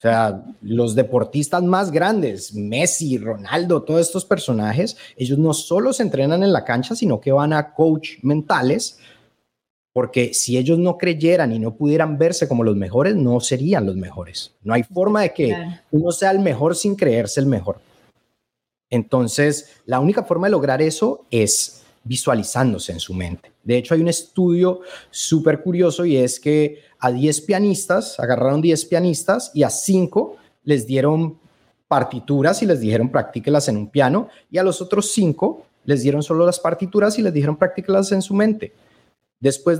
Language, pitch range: Spanish, 125-180 Hz